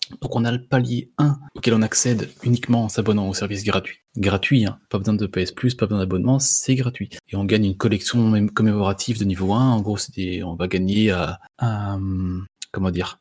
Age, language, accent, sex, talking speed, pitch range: 20-39, French, French, male, 200 wpm, 100-130 Hz